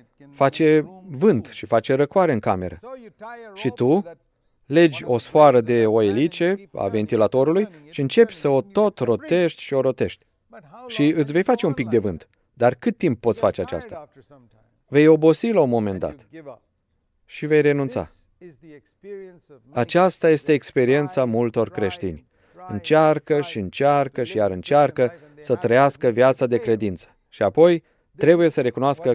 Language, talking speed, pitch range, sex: Romanian, 145 wpm, 125-170 Hz, male